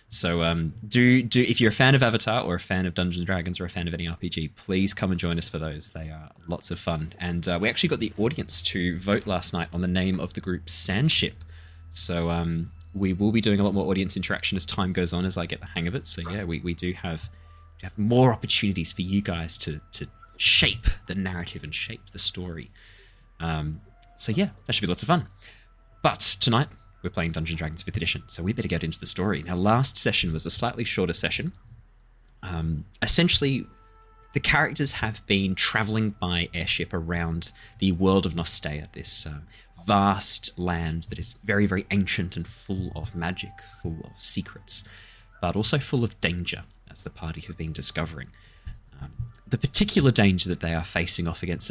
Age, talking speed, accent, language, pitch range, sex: 20-39, 210 wpm, Australian, English, 85-105 Hz, male